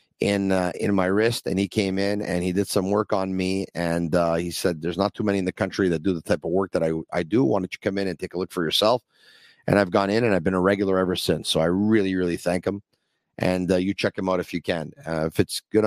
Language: English